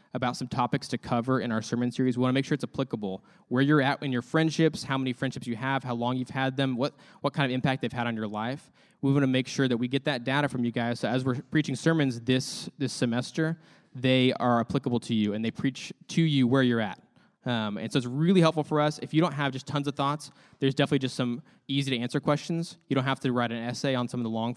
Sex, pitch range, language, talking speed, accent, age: male, 115-140 Hz, English, 270 wpm, American, 20-39